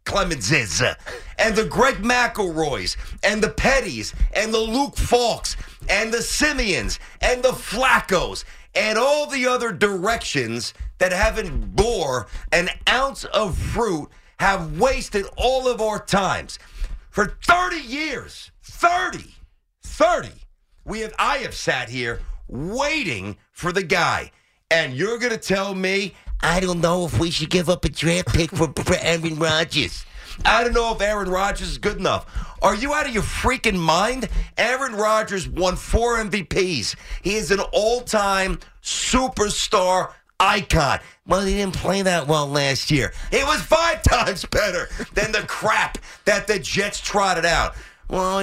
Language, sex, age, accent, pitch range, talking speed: English, male, 50-69, American, 165-230 Hz, 150 wpm